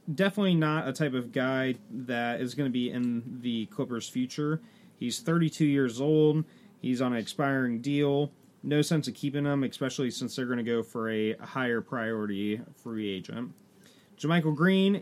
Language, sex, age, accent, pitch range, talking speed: English, male, 30-49, American, 130-170 Hz, 170 wpm